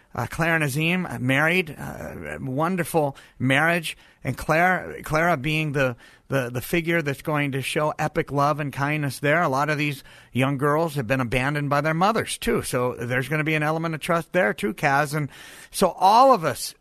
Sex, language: male, English